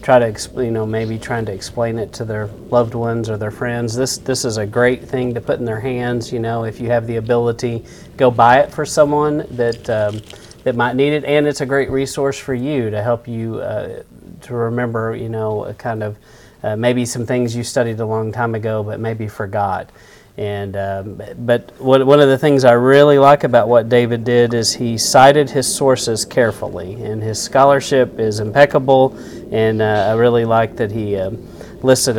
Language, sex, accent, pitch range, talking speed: English, male, American, 110-125 Hz, 205 wpm